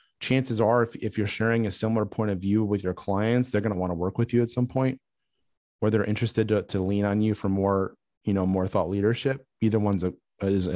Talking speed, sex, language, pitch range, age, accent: 245 wpm, male, English, 95-120 Hz, 30-49, American